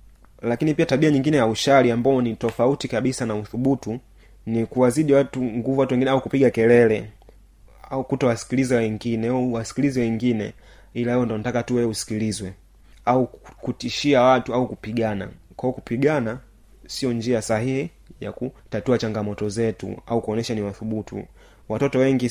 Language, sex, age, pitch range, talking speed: Swahili, male, 30-49, 110-130 Hz, 140 wpm